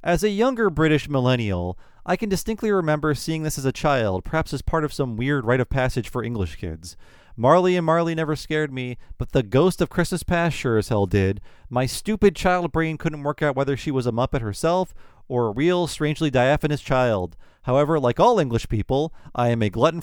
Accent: American